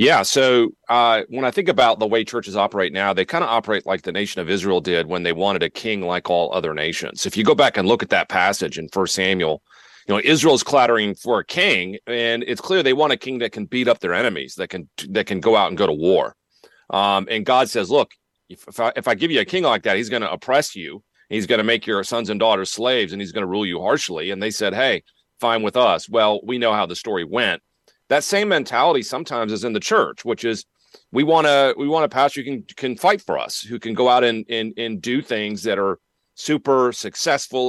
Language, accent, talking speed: English, American, 255 wpm